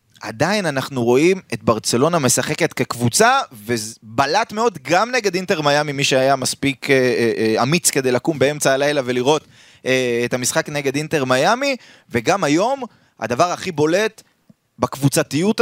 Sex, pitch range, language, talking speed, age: male, 140-200 Hz, Hebrew, 140 wpm, 30-49